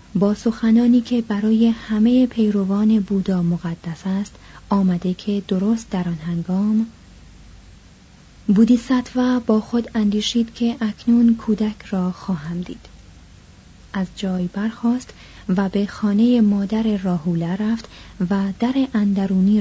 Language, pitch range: Persian, 170-220 Hz